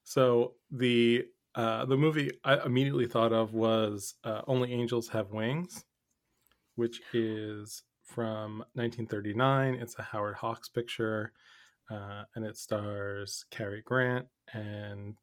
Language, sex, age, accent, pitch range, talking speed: English, male, 20-39, American, 110-125 Hz, 120 wpm